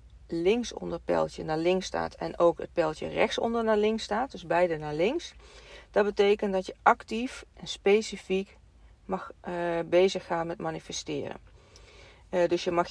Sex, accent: female, Dutch